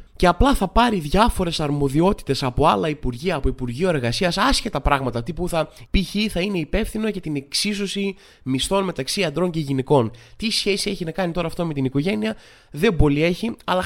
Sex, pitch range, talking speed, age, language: male, 125-165 Hz, 180 wpm, 20-39, Greek